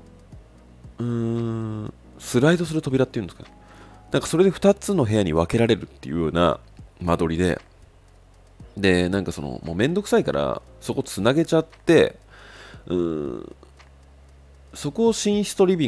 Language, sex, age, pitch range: Japanese, male, 30-49, 80-120 Hz